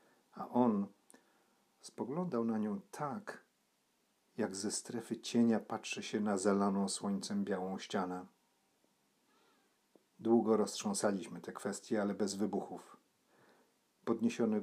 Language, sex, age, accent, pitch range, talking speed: Polish, male, 40-59, native, 100-115 Hz, 105 wpm